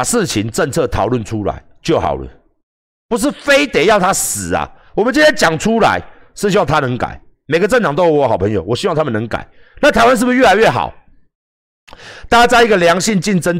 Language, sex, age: Chinese, male, 50-69